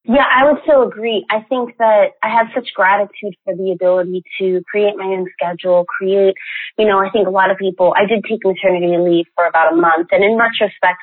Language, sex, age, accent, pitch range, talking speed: English, female, 20-39, American, 175-215 Hz, 225 wpm